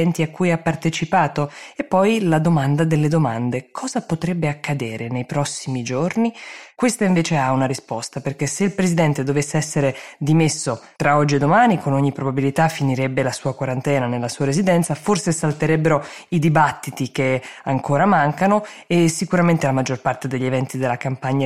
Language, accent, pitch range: Italian, native, 135-175 Hz